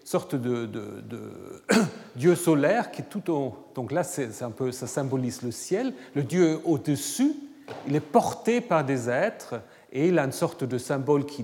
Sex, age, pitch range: male, 40-59, 130-200 Hz